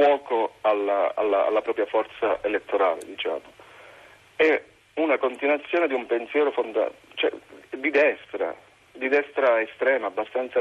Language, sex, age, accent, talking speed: Italian, male, 40-59, native, 105 wpm